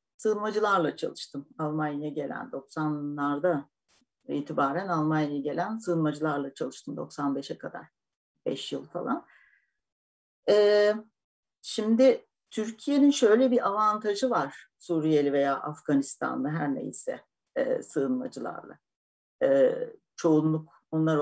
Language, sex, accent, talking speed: Turkish, female, native, 90 wpm